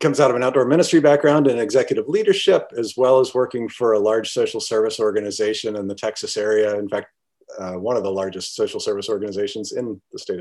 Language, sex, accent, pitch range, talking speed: English, male, American, 115-150 Hz, 215 wpm